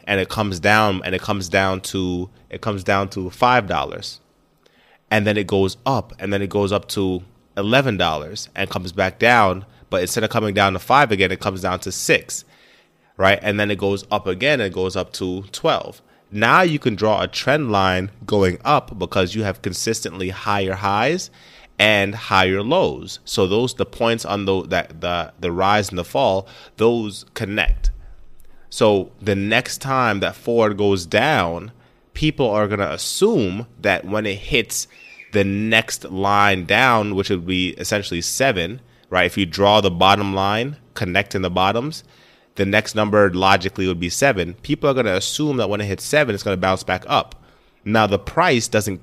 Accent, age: American, 20-39